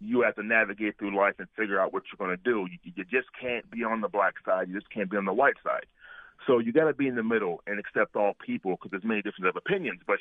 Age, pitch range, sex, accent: 40-59, 105-145 Hz, male, American